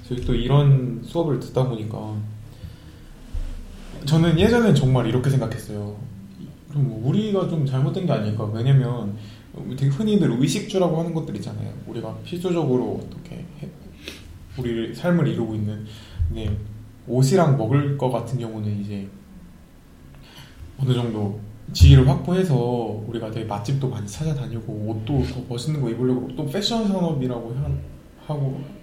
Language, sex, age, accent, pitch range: Korean, male, 20-39, native, 105-140 Hz